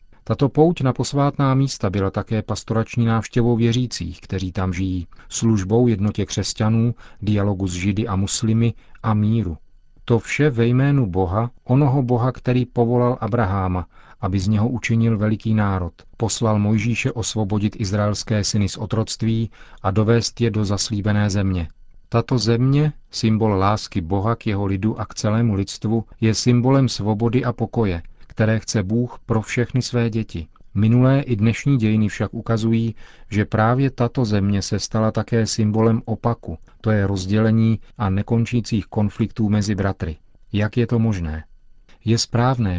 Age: 40-59